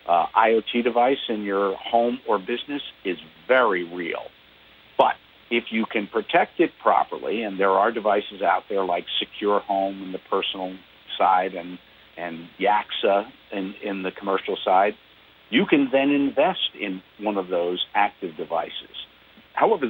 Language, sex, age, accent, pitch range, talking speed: English, male, 50-69, American, 95-120 Hz, 150 wpm